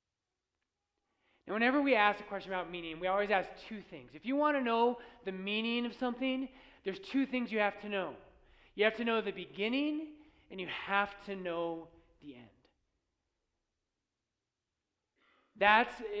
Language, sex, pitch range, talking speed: English, male, 185-235 Hz, 160 wpm